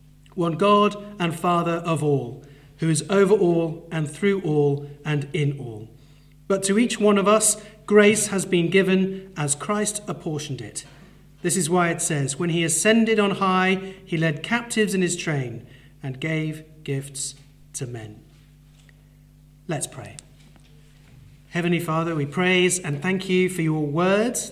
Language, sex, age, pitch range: English, male, 40-59, 145-185 Hz